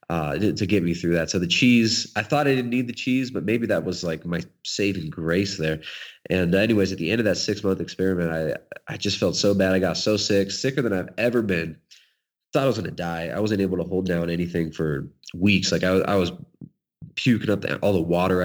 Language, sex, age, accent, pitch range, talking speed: English, male, 20-39, American, 85-105 Hz, 245 wpm